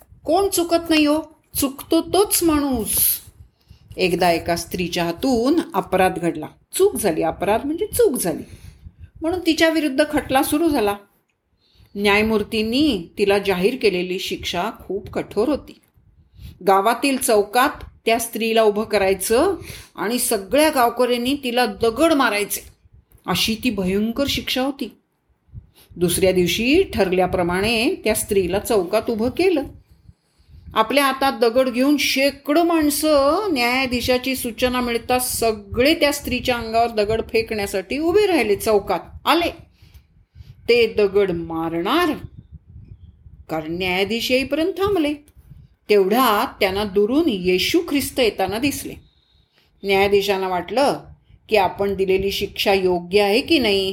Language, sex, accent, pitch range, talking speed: Marathi, female, native, 190-280 Hz, 110 wpm